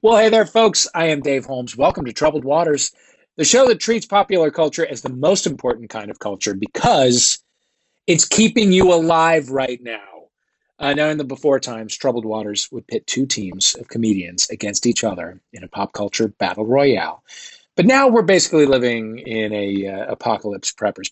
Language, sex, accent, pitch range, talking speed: English, male, American, 115-170 Hz, 190 wpm